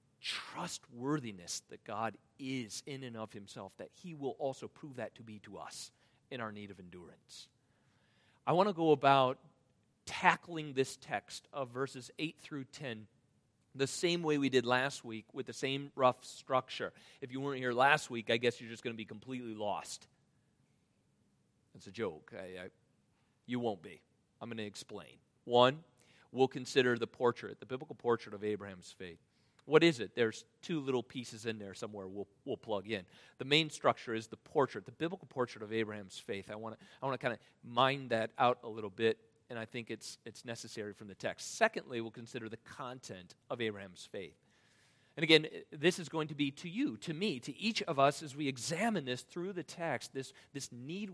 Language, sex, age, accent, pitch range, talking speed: English, male, 40-59, American, 115-150 Hz, 190 wpm